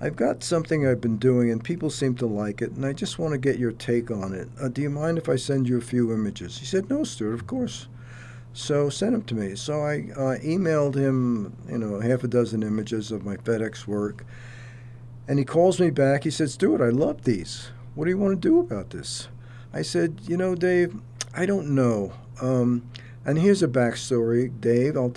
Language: English